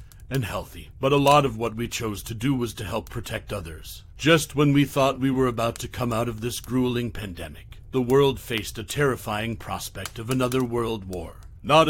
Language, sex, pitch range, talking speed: English, male, 105-135 Hz, 205 wpm